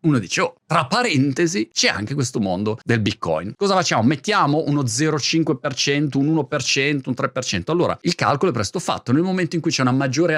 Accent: native